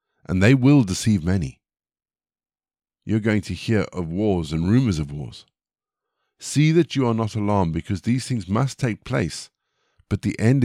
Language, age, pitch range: English, 50-69, 90-120 Hz